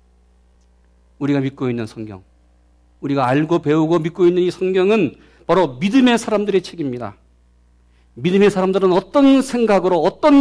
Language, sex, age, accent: Korean, male, 40-59, native